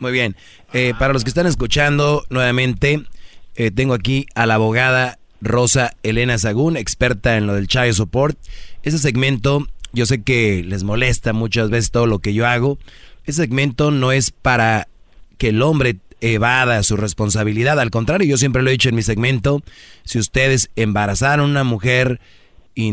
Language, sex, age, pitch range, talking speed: Spanish, male, 30-49, 110-130 Hz, 175 wpm